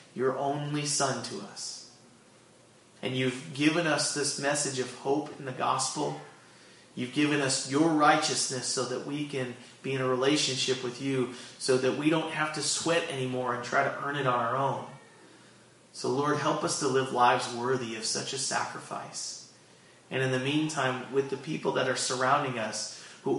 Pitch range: 125-140 Hz